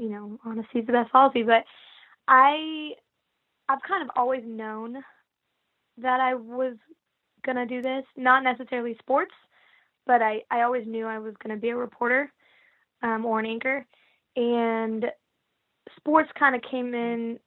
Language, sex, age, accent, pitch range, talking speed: English, female, 20-39, American, 220-255 Hz, 160 wpm